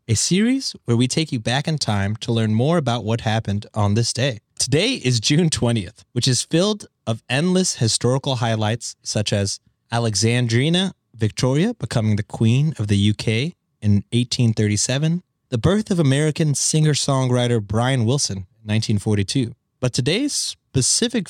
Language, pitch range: English, 110-145 Hz